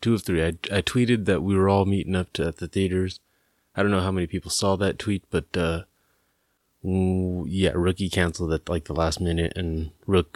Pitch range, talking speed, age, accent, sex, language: 85-110 Hz, 215 wpm, 30-49, American, male, English